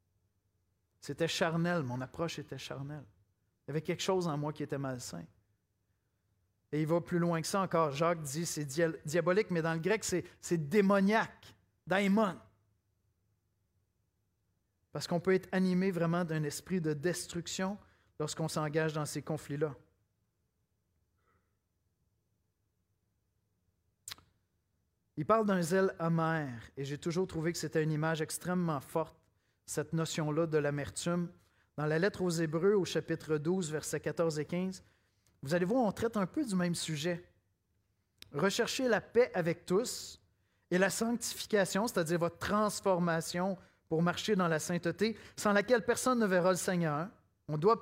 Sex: male